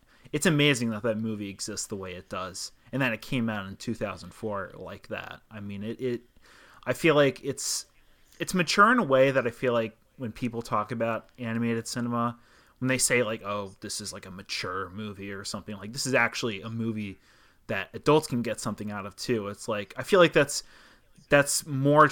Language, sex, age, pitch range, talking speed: English, male, 30-49, 100-125 Hz, 210 wpm